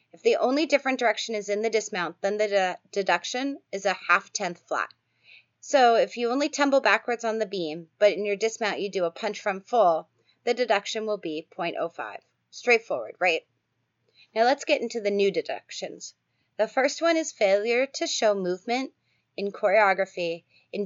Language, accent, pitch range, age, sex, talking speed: English, American, 185-245 Hz, 30-49, female, 175 wpm